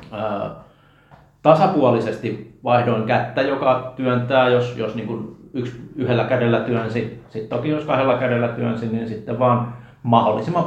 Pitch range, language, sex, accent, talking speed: 110-125 Hz, Finnish, male, native, 125 wpm